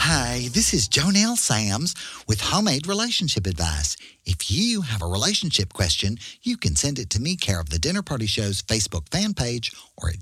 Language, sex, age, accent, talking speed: English, male, 40-59, American, 190 wpm